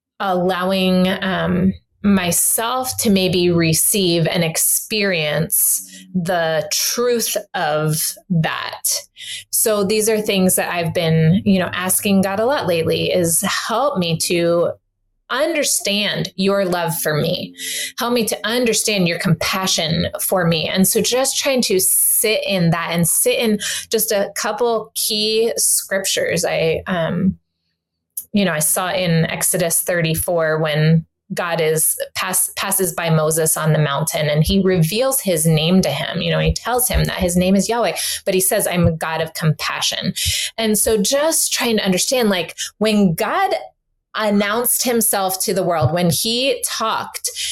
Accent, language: American, English